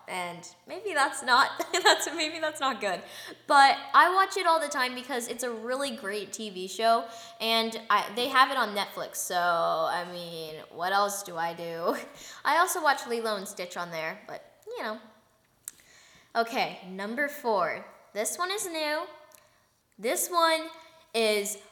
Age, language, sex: 10-29, English, female